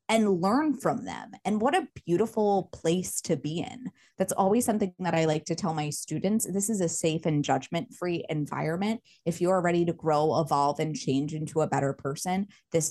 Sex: female